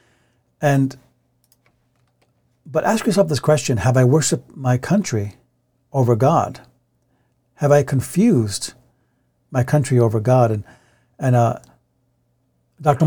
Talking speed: 110 wpm